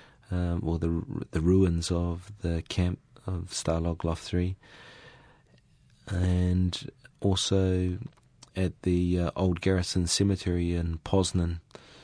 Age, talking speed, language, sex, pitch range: 30-49, 115 wpm, English, male, 85-95 Hz